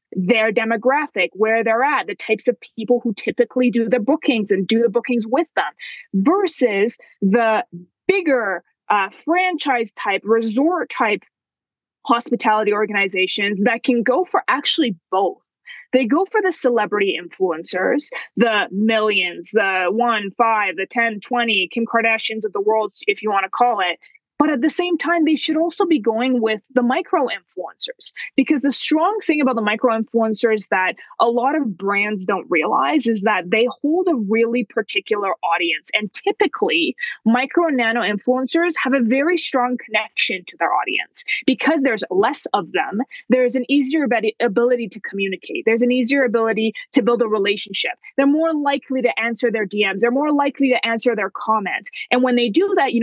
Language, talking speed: English, 165 wpm